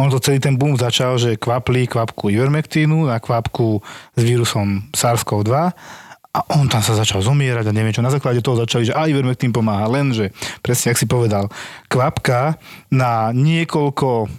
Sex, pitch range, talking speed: male, 120-145 Hz, 160 wpm